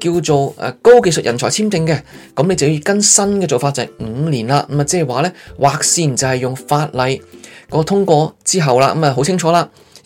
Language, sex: Chinese, male